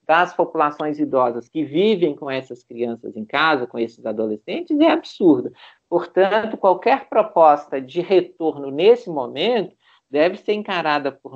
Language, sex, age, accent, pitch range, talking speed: Portuguese, male, 50-69, Brazilian, 140-190 Hz, 135 wpm